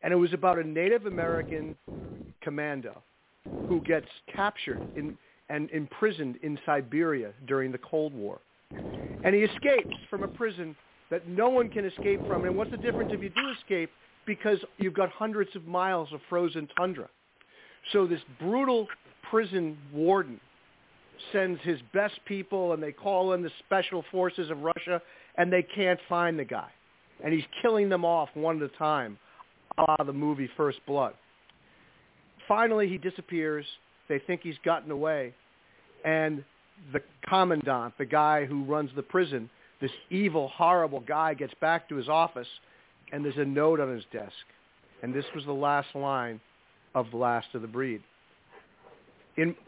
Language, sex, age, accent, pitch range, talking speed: English, male, 50-69, American, 145-185 Hz, 160 wpm